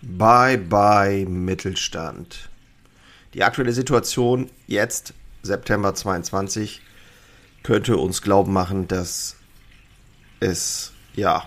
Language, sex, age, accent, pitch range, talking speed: German, male, 40-59, German, 95-115 Hz, 85 wpm